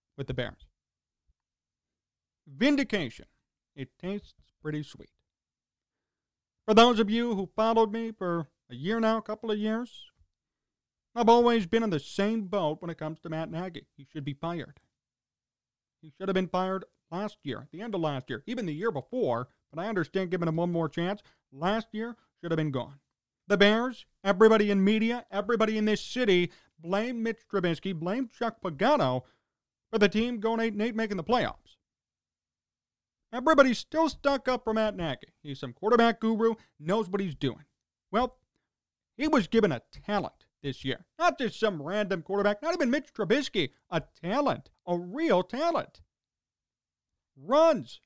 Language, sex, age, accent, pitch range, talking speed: English, male, 40-59, American, 150-230 Hz, 165 wpm